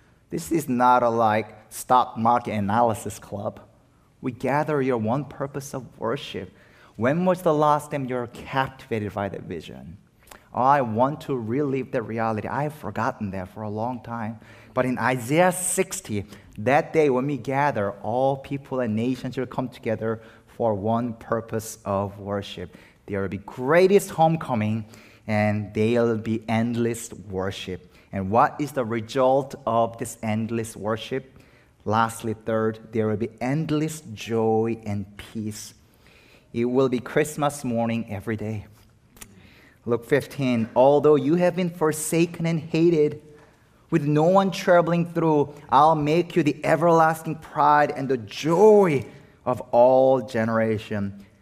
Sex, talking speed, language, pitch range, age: male, 145 wpm, English, 110-150 Hz, 30-49